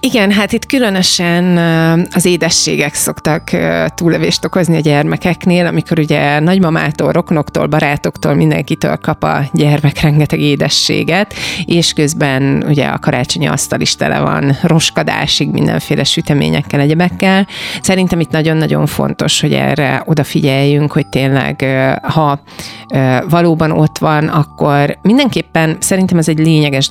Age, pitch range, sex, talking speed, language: 30-49, 140-170 Hz, female, 120 wpm, Hungarian